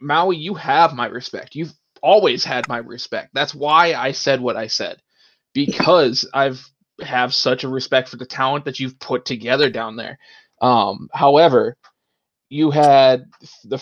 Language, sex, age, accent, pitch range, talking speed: English, male, 20-39, American, 125-150 Hz, 165 wpm